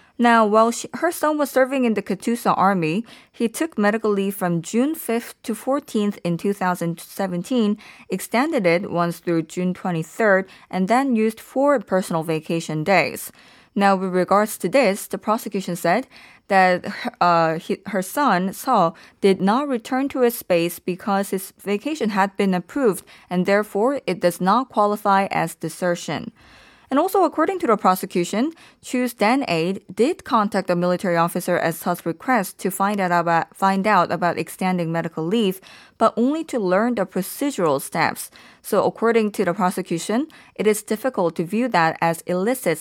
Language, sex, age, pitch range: Korean, female, 20-39, 180-235 Hz